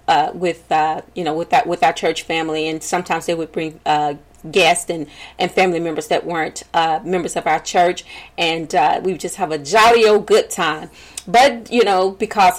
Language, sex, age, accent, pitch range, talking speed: English, female, 30-49, American, 160-200 Hz, 210 wpm